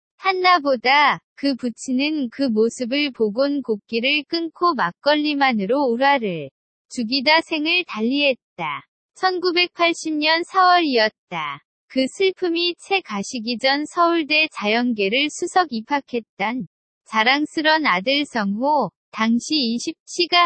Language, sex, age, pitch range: Korean, female, 20-39, 235-325 Hz